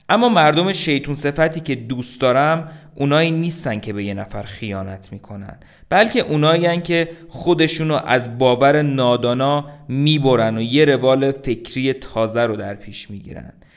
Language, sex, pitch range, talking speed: Persian, male, 115-150 Hz, 150 wpm